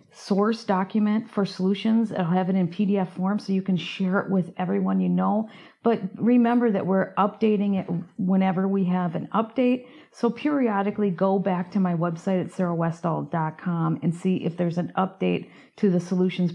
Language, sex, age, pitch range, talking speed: English, female, 40-59, 170-200 Hz, 180 wpm